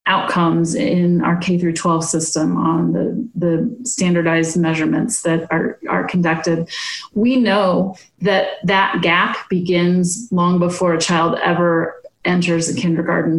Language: English